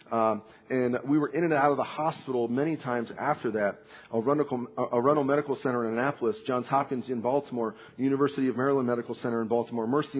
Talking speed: 205 wpm